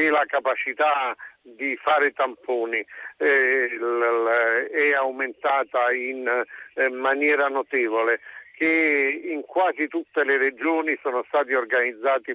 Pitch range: 130-165 Hz